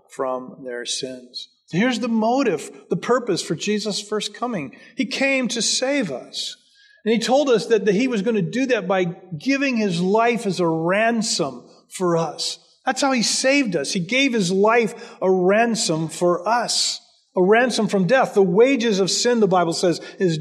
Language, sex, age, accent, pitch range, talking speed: English, male, 40-59, American, 180-235 Hz, 180 wpm